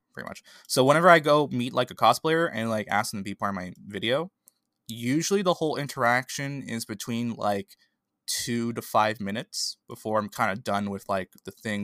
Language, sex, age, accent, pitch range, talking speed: English, male, 20-39, American, 110-155 Hz, 205 wpm